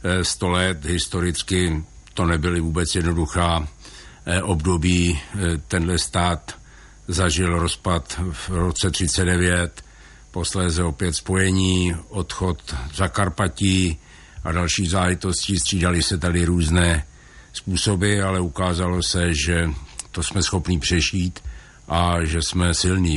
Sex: male